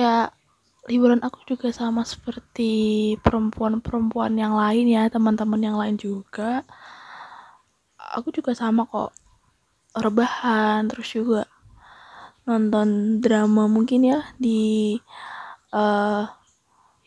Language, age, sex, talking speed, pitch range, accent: Indonesian, 20-39, female, 95 wpm, 215-245 Hz, native